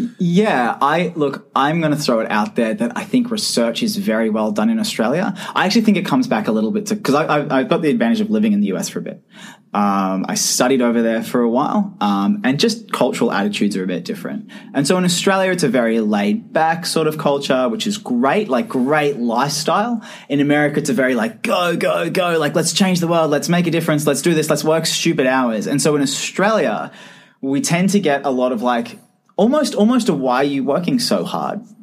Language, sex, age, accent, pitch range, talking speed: English, male, 20-39, Australian, 140-220 Hz, 230 wpm